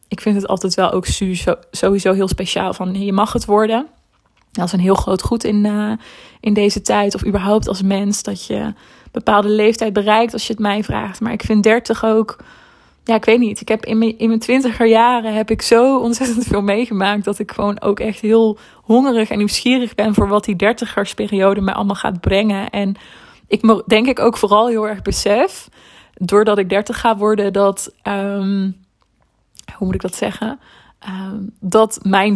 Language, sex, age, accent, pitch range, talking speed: Dutch, female, 20-39, Dutch, 190-220 Hz, 195 wpm